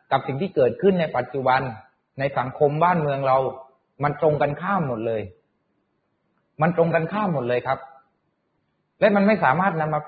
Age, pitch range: 30-49, 115-150 Hz